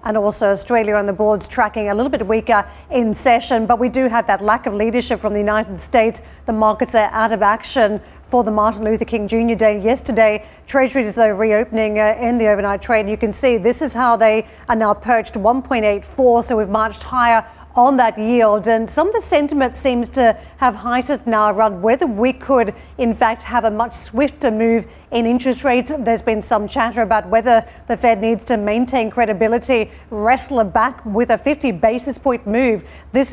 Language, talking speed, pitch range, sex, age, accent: English, 200 wpm, 215-245 Hz, female, 40-59, Australian